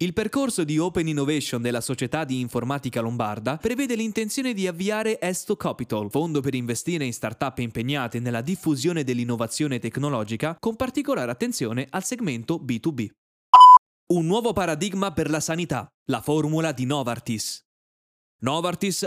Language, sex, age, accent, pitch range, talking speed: Italian, male, 20-39, native, 130-195 Hz, 135 wpm